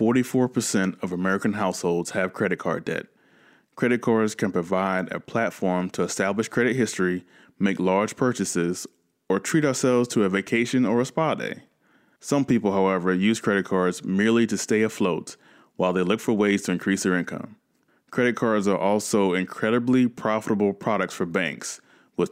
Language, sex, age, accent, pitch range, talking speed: English, male, 20-39, American, 95-115 Hz, 160 wpm